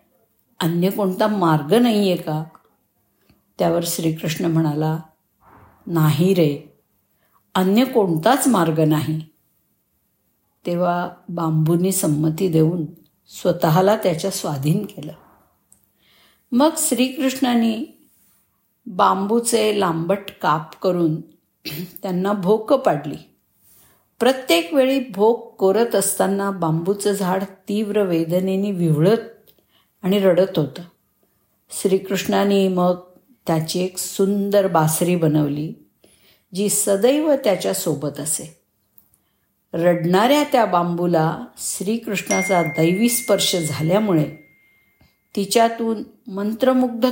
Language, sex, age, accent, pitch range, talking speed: Marathi, female, 50-69, native, 160-215 Hz, 85 wpm